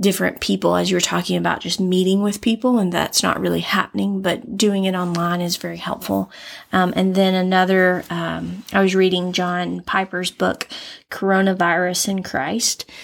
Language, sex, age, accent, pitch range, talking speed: English, female, 20-39, American, 180-205 Hz, 170 wpm